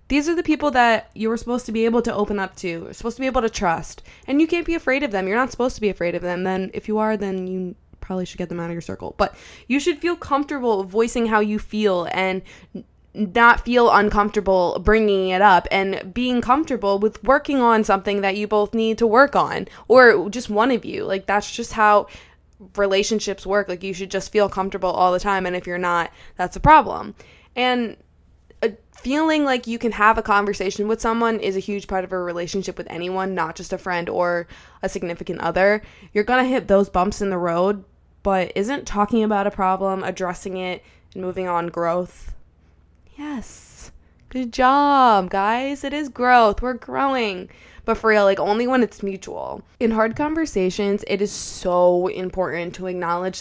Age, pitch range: 20-39, 185-230 Hz